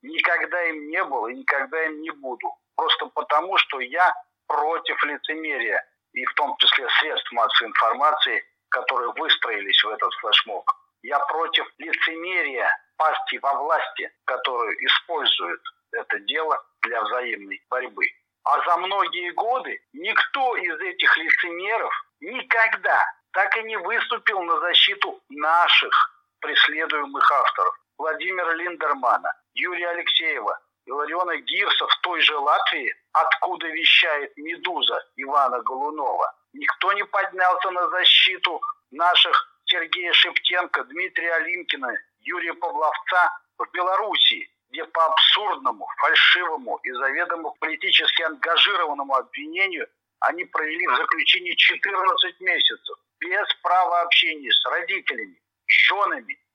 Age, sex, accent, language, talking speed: 50-69, male, native, Russian, 115 wpm